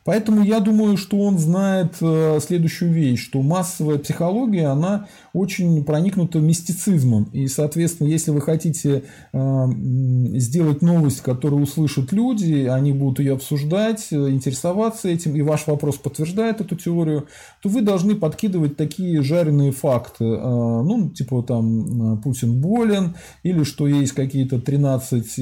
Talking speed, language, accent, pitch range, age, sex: 135 wpm, Russian, native, 130-165 Hz, 20-39, male